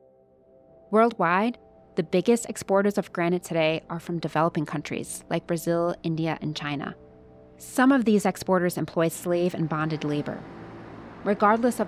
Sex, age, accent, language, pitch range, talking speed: female, 20-39, American, English, 160-195 Hz, 135 wpm